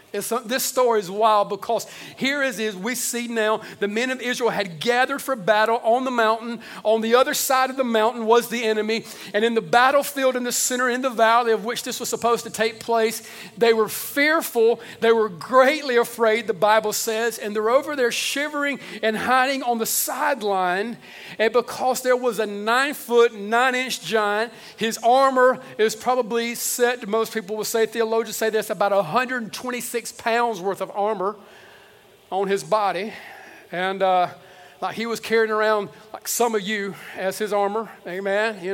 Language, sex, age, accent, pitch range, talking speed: English, male, 50-69, American, 210-250 Hz, 185 wpm